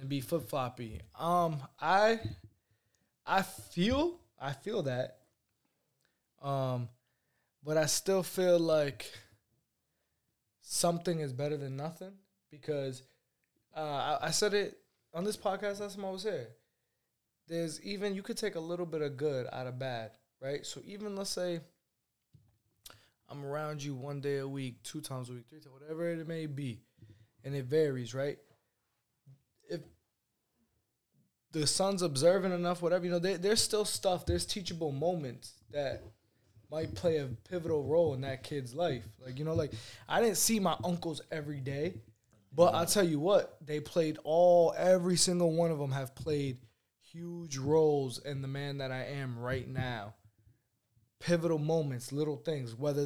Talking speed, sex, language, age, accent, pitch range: 155 wpm, male, English, 20-39, American, 130-170 Hz